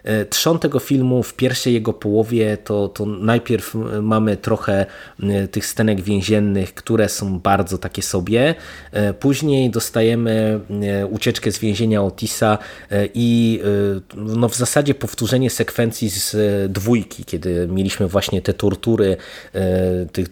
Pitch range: 100-120 Hz